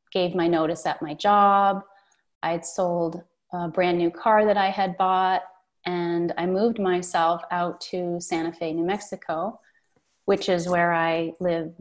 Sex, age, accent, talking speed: female, 30-49, American, 160 wpm